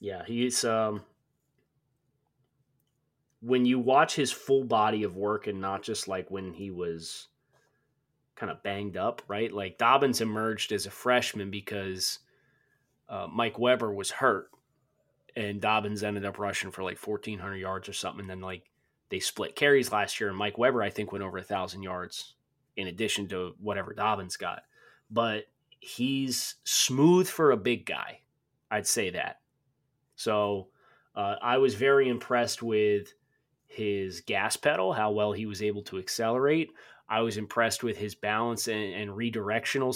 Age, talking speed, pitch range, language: 30-49, 155 wpm, 100-130 Hz, English